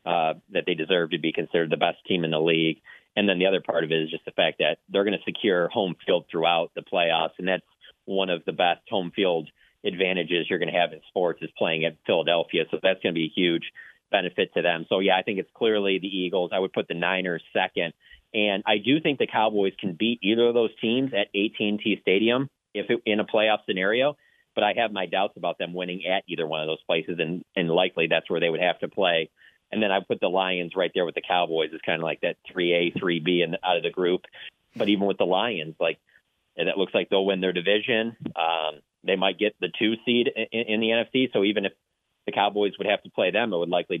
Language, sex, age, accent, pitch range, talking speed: English, male, 40-59, American, 85-105 Hz, 250 wpm